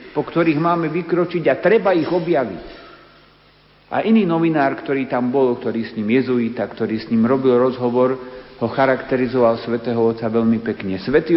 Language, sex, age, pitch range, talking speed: Slovak, male, 50-69, 115-150 Hz, 160 wpm